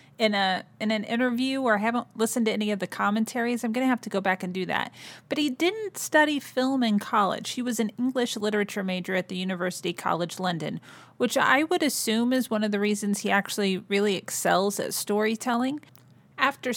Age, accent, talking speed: 30-49, American, 210 wpm